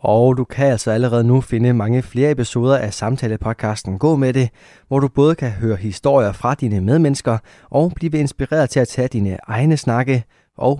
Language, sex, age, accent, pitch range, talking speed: Danish, male, 20-39, native, 105-130 Hz, 190 wpm